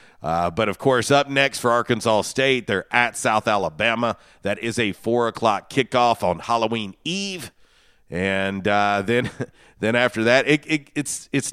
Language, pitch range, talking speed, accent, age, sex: English, 105-125 Hz, 165 wpm, American, 40-59, male